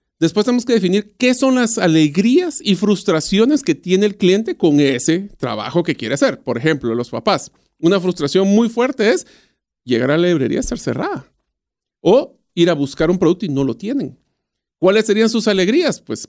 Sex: male